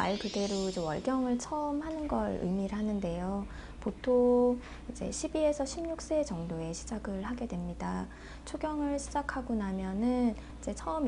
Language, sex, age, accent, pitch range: Korean, female, 20-39, native, 195-245 Hz